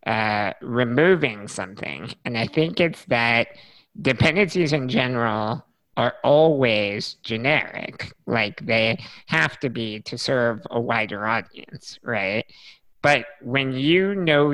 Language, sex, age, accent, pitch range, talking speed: English, male, 50-69, American, 115-145 Hz, 120 wpm